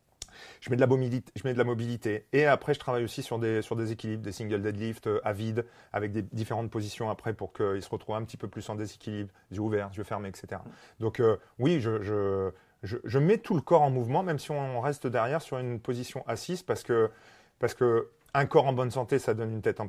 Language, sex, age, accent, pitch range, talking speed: French, male, 30-49, French, 105-130 Hz, 245 wpm